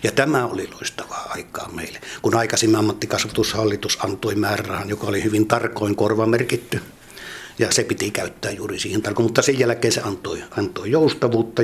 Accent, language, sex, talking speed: native, Finnish, male, 160 wpm